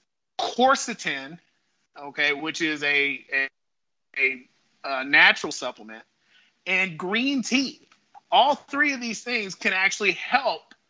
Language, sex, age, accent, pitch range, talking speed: English, male, 30-49, American, 155-235 Hz, 115 wpm